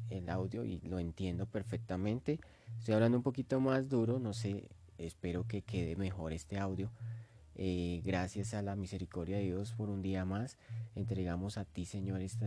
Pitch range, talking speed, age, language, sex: 95-110 Hz, 175 wpm, 30-49, English, male